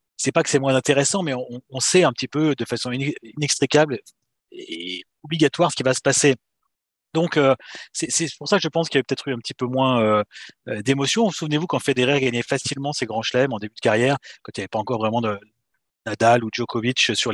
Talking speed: 235 wpm